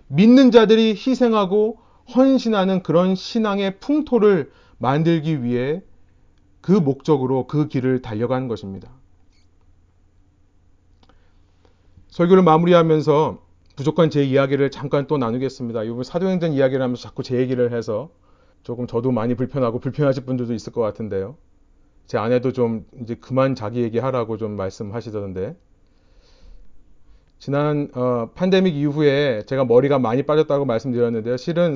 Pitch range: 110-150 Hz